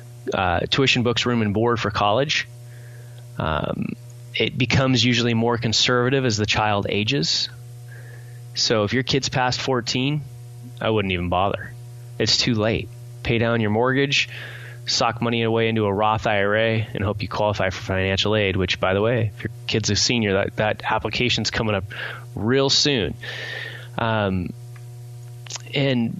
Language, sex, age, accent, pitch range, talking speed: English, male, 20-39, American, 110-125 Hz, 155 wpm